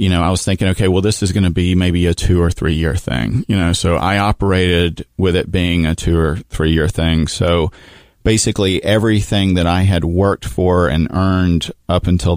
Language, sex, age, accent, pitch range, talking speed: English, male, 40-59, American, 85-95 Hz, 210 wpm